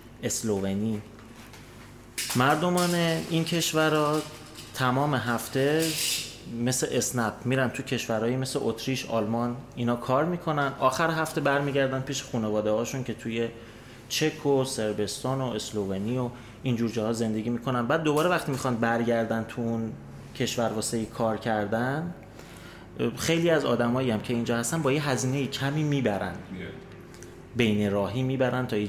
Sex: male